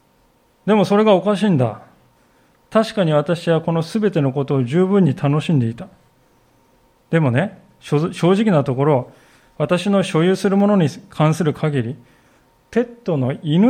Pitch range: 135-195 Hz